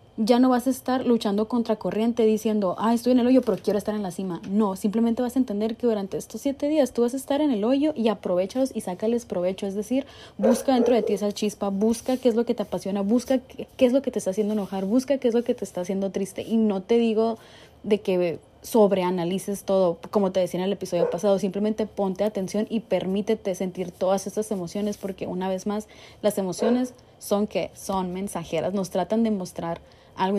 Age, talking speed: 20-39, 225 wpm